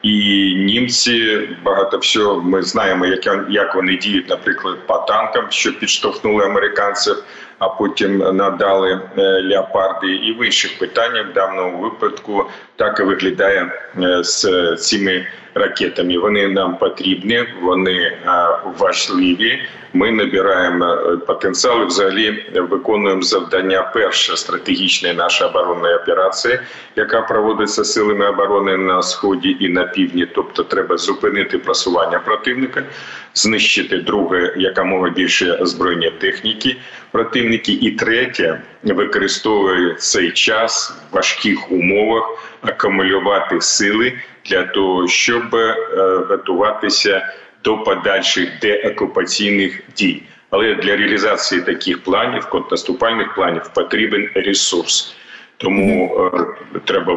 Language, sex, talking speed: Ukrainian, male, 105 wpm